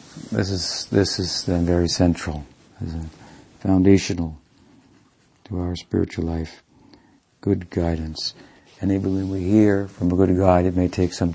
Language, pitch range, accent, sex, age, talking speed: English, 85-100 Hz, American, male, 60-79, 150 wpm